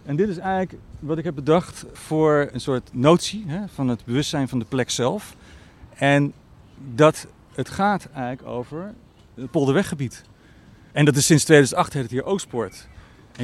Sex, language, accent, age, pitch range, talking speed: male, Dutch, Dutch, 40-59, 125-155 Hz, 170 wpm